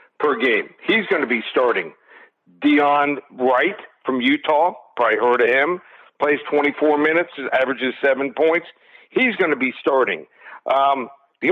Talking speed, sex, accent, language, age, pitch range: 145 wpm, male, American, English, 60-79, 145-225 Hz